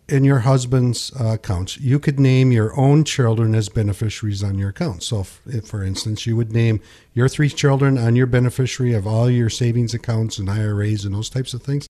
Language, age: English, 50-69